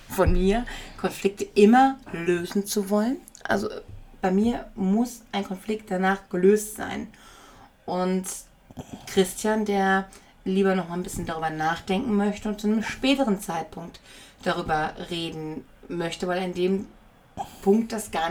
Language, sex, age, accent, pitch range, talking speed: German, female, 30-49, German, 165-215 Hz, 135 wpm